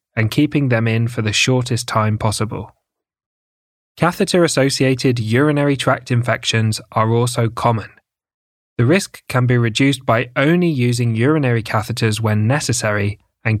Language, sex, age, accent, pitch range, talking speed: English, male, 20-39, British, 110-135 Hz, 130 wpm